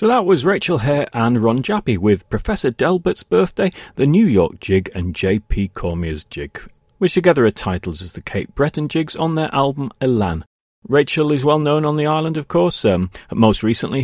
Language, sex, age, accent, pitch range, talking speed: English, male, 40-59, British, 95-140 Hz, 190 wpm